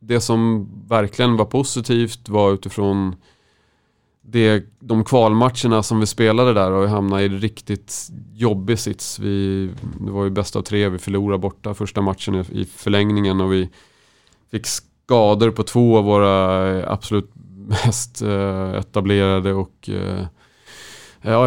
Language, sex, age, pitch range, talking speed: Swedish, male, 30-49, 95-115 Hz, 135 wpm